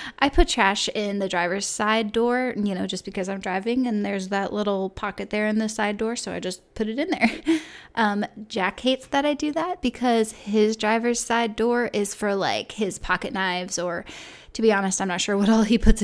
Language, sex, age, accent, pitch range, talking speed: English, female, 10-29, American, 205-250 Hz, 225 wpm